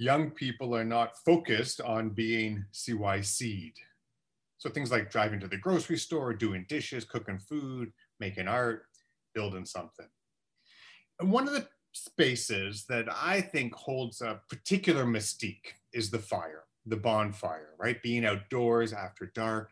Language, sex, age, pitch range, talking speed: English, male, 30-49, 105-150 Hz, 140 wpm